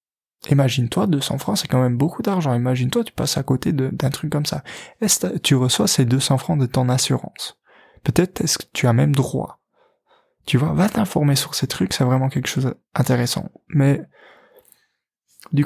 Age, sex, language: 20-39, male, French